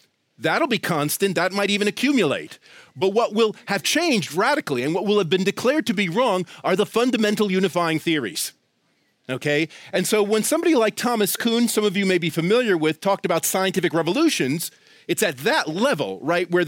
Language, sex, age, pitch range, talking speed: English, male, 40-59, 165-215 Hz, 185 wpm